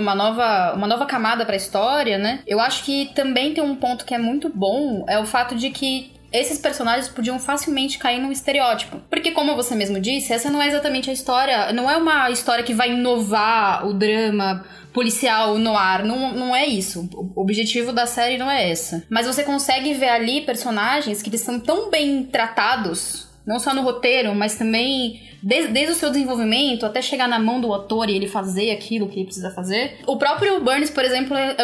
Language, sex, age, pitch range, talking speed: English, female, 10-29, 215-275 Hz, 205 wpm